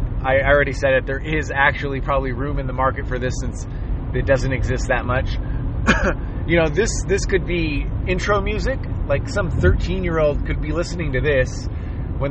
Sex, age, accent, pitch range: male, 30-49, American, 110-145 Hz